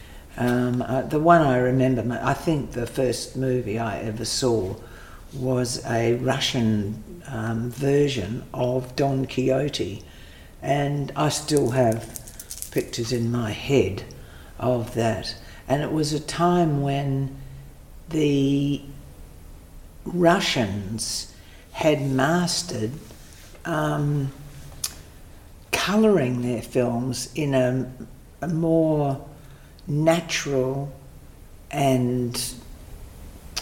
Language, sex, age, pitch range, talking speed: English, female, 60-79, 115-140 Hz, 95 wpm